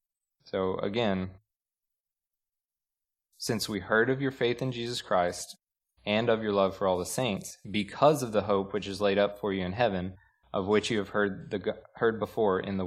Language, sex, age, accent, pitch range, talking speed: English, male, 20-39, American, 95-115 Hz, 190 wpm